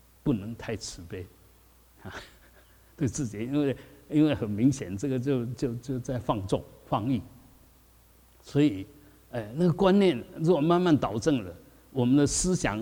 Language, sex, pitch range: Chinese, male, 105-140 Hz